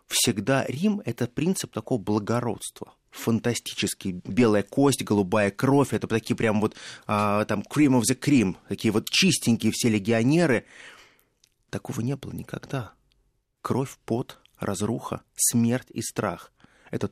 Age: 20-39